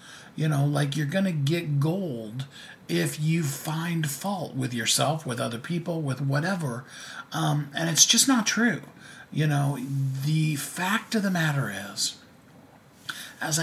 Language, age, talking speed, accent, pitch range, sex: English, 40-59, 150 wpm, American, 130-160 Hz, male